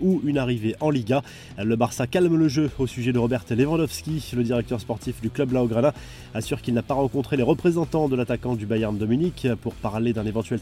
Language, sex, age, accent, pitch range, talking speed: French, male, 20-39, French, 115-145 Hz, 215 wpm